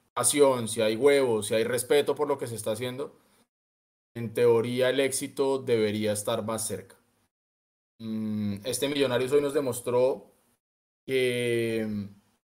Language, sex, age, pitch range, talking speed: Spanish, male, 20-39, 115-145 Hz, 130 wpm